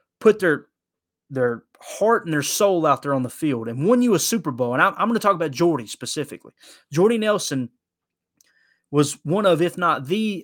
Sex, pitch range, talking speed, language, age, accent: male, 140-185 Hz, 200 wpm, English, 20-39, American